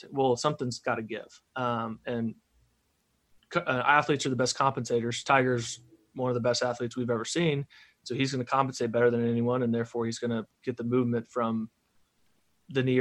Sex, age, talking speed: male, 30-49, 195 wpm